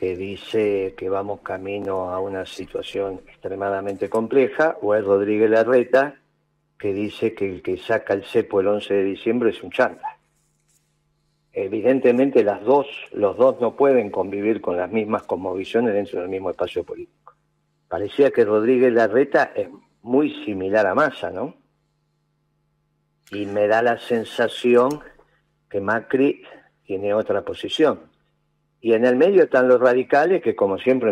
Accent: Argentinian